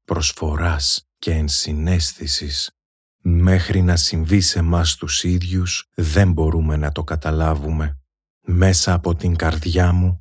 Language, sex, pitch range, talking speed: Greek, male, 80-90 Hz, 120 wpm